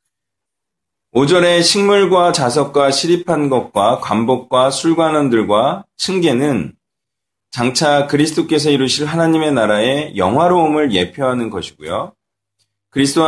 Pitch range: 115-160 Hz